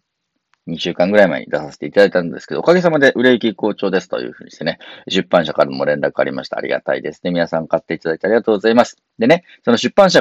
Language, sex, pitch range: Japanese, male, 85-125 Hz